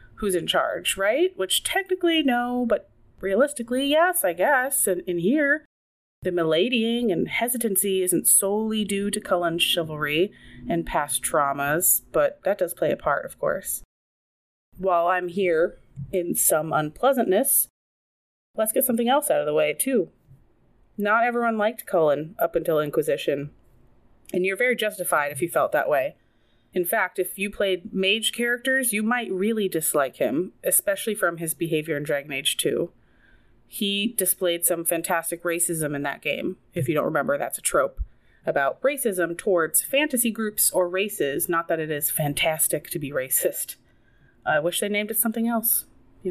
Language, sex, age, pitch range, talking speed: English, female, 30-49, 170-230 Hz, 160 wpm